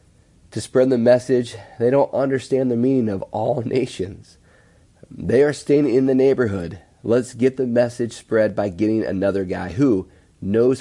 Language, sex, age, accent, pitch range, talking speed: English, male, 30-49, American, 90-120 Hz, 160 wpm